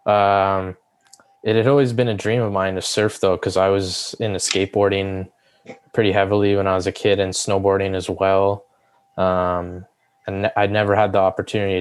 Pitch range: 95-115 Hz